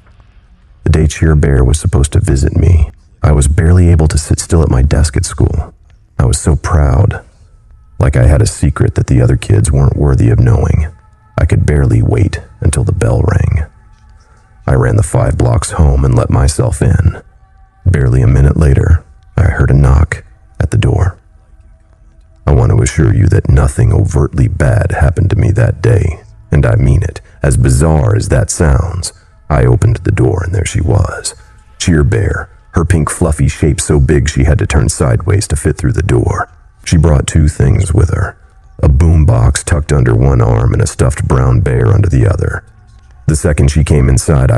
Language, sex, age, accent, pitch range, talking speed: English, male, 40-59, American, 75-105 Hz, 190 wpm